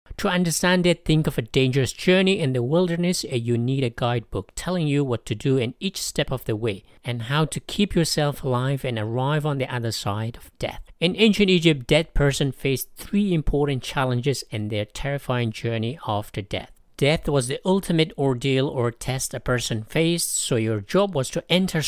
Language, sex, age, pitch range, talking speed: English, male, 50-69, 115-160 Hz, 195 wpm